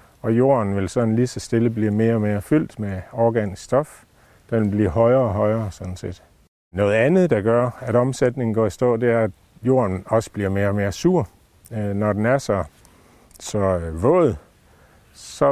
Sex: male